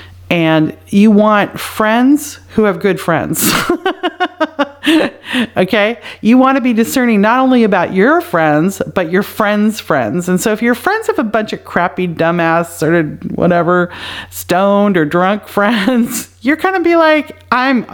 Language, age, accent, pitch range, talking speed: English, 40-59, American, 160-225 Hz, 155 wpm